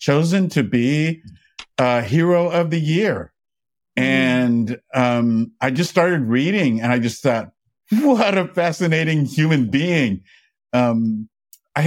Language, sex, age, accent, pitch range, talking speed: English, male, 50-69, American, 115-145 Hz, 125 wpm